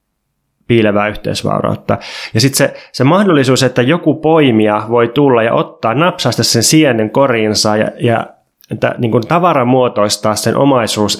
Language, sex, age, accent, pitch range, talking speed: Finnish, male, 20-39, native, 110-130 Hz, 140 wpm